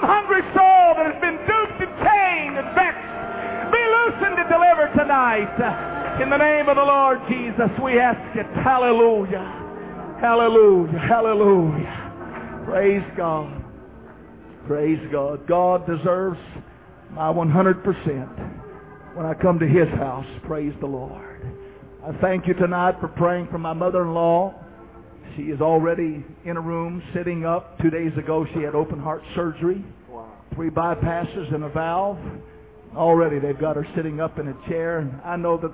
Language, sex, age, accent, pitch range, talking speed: English, male, 50-69, American, 155-195 Hz, 150 wpm